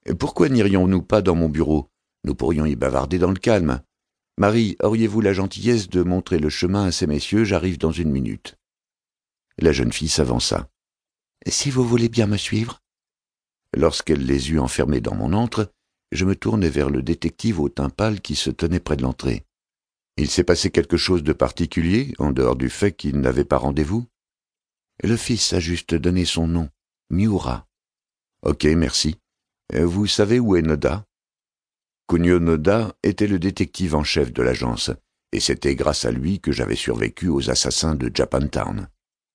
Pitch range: 75-100 Hz